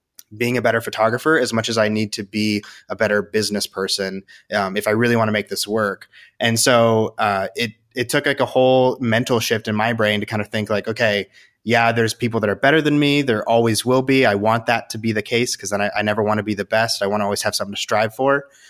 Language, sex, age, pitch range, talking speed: English, male, 30-49, 105-120 Hz, 265 wpm